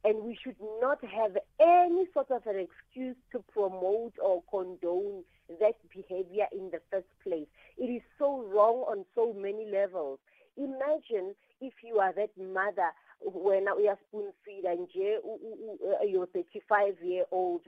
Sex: female